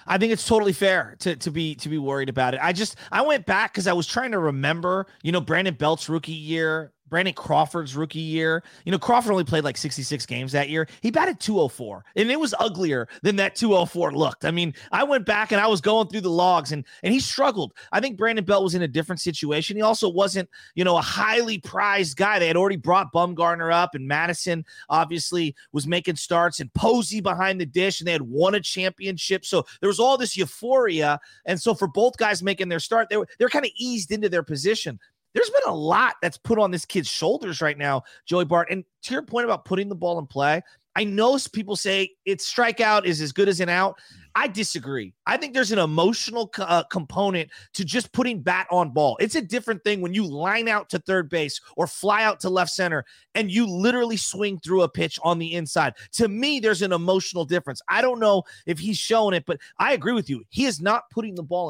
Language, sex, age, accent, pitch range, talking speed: English, male, 30-49, American, 165-215 Hz, 230 wpm